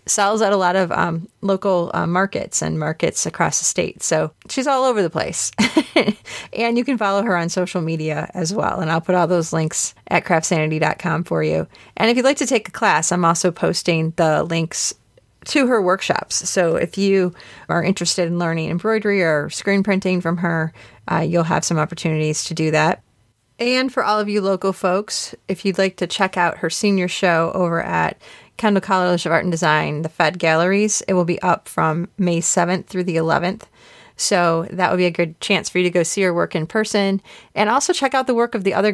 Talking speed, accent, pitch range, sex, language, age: 215 wpm, American, 165-200 Hz, female, English, 30-49